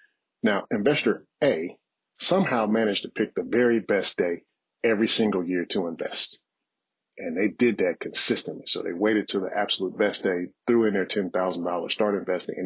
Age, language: 40-59, English